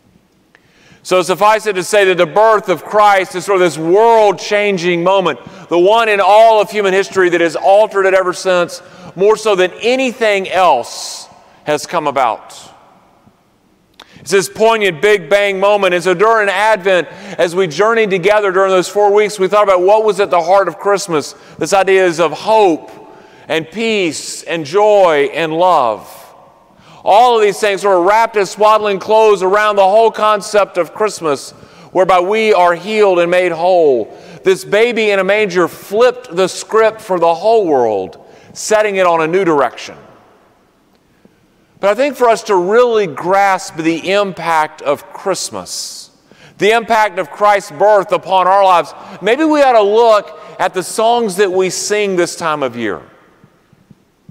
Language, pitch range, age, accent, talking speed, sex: English, 180-215 Hz, 40-59, American, 165 wpm, male